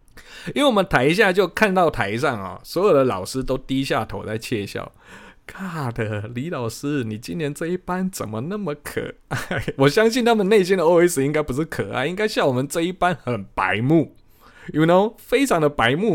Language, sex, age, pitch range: Chinese, male, 20-39, 105-165 Hz